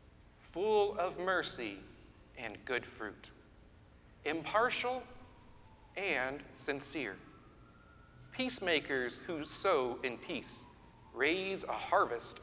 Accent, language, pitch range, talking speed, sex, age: American, English, 125-190 Hz, 80 wpm, male, 40-59